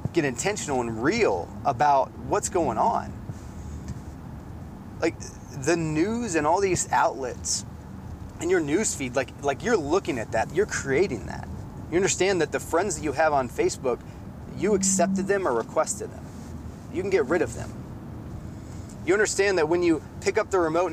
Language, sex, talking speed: English, male, 170 wpm